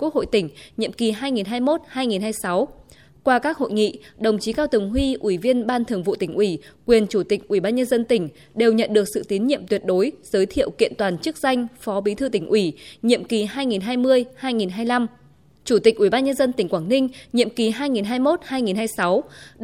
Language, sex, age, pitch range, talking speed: Vietnamese, female, 20-39, 205-260 Hz, 195 wpm